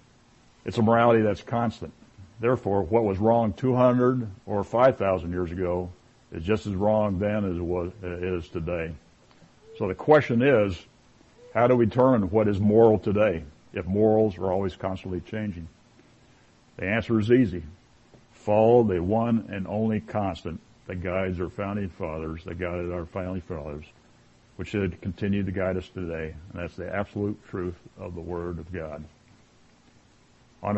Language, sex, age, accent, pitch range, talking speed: English, male, 60-79, American, 90-115 Hz, 155 wpm